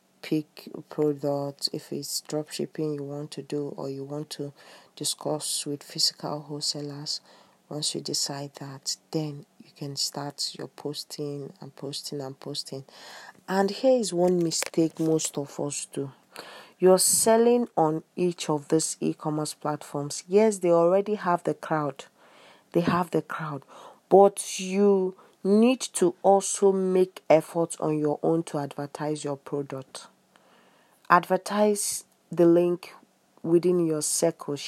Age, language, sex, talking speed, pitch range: 40-59, English, female, 135 wpm, 145-180 Hz